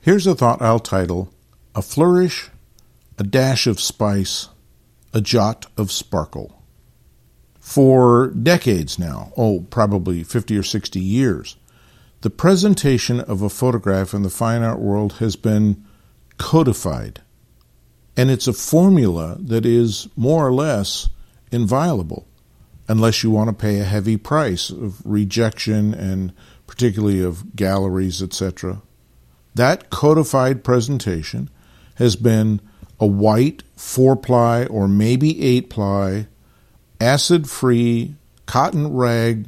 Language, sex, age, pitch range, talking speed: English, male, 50-69, 100-125 Hz, 115 wpm